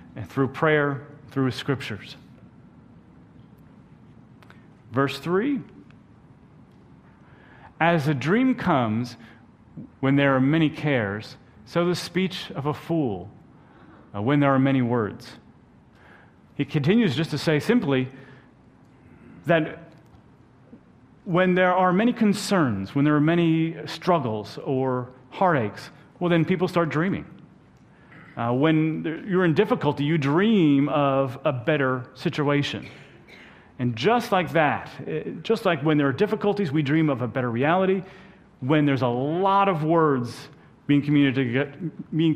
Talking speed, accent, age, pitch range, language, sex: 125 wpm, American, 40-59, 125-165 Hz, English, male